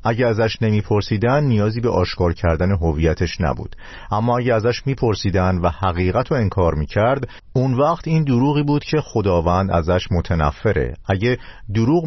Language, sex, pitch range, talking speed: Persian, male, 90-125 Hz, 145 wpm